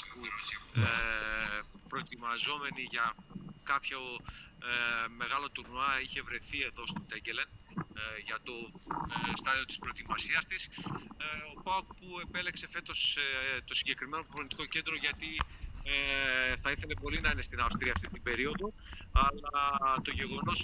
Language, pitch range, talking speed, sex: Greek, 115-145 Hz, 135 wpm, male